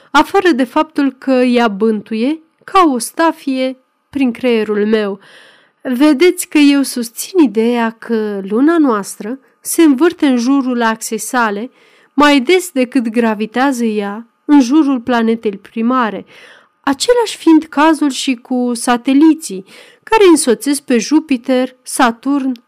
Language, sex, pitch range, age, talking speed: Romanian, female, 225-295 Hz, 30-49, 120 wpm